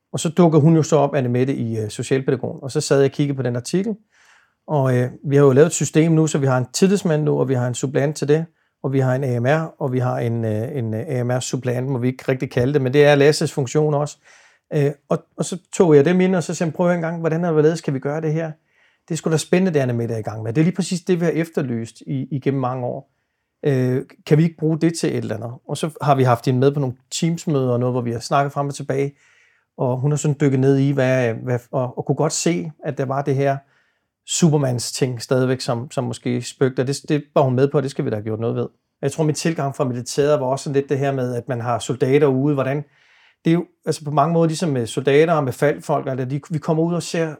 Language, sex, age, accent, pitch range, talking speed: Danish, male, 40-59, native, 130-160 Hz, 270 wpm